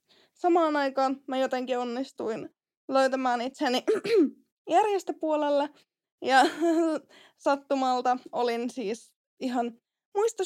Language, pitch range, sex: Finnish, 265-330 Hz, female